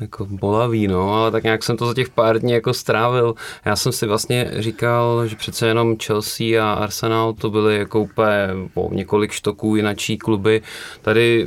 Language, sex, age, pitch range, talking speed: Czech, male, 20-39, 110-135 Hz, 185 wpm